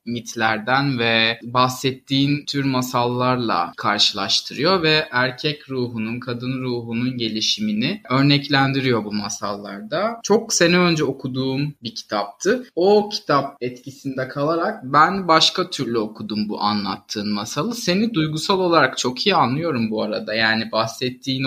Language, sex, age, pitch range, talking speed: Turkish, male, 20-39, 120-150 Hz, 115 wpm